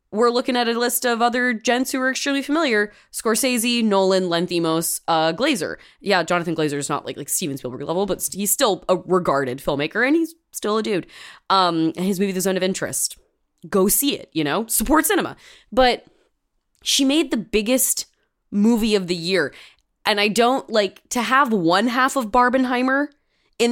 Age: 20-39